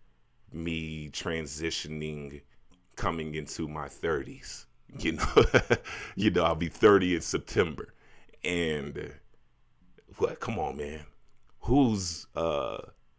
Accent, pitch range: American, 80-100 Hz